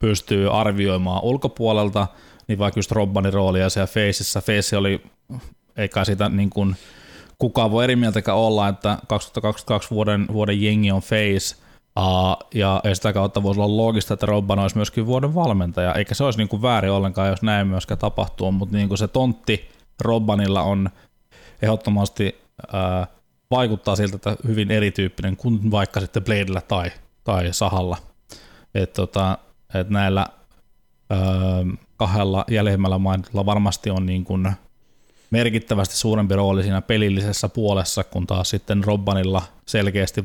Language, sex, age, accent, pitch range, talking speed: Finnish, male, 20-39, native, 95-105 Hz, 135 wpm